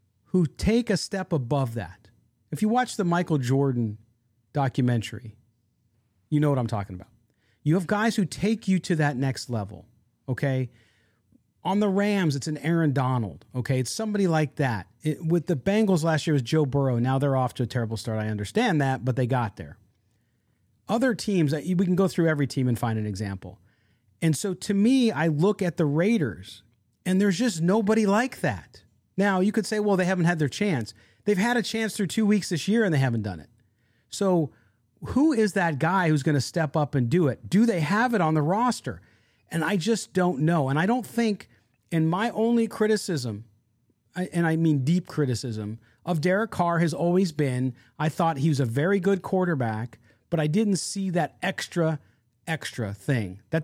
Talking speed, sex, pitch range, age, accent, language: 195 wpm, male, 115-185 Hz, 40-59, American, English